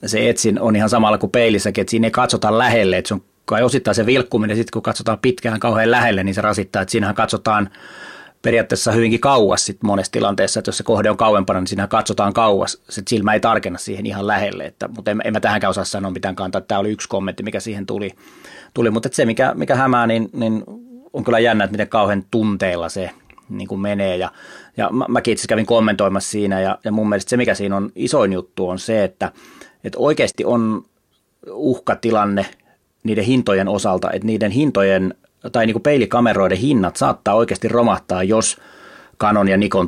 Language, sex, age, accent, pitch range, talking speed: Finnish, male, 30-49, native, 100-115 Hz, 200 wpm